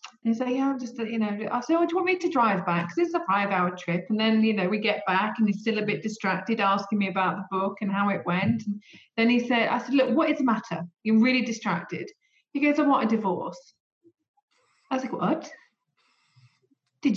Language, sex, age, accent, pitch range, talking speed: English, female, 30-49, British, 200-250 Hz, 245 wpm